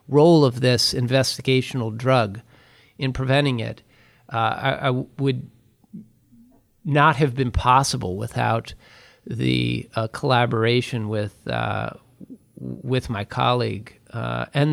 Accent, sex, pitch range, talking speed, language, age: American, male, 115-135 Hz, 110 wpm, English, 40-59